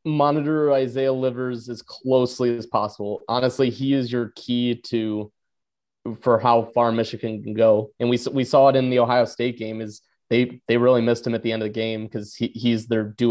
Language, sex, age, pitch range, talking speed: English, male, 20-39, 115-140 Hz, 205 wpm